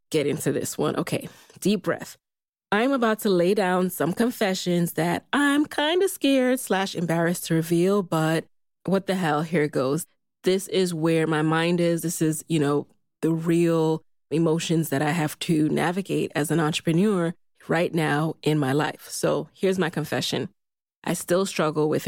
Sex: female